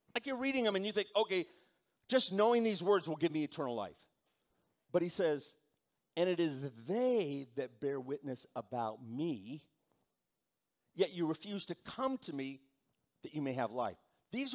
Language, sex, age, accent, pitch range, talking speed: English, male, 50-69, American, 145-220 Hz, 175 wpm